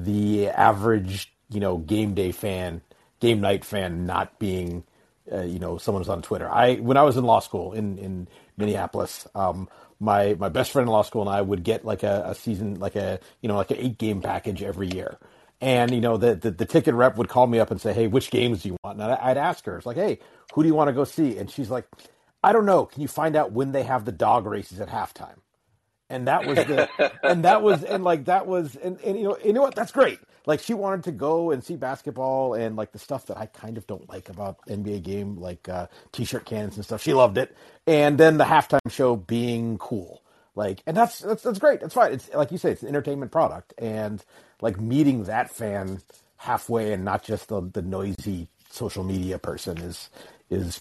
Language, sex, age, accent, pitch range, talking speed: English, male, 40-59, American, 100-135 Hz, 235 wpm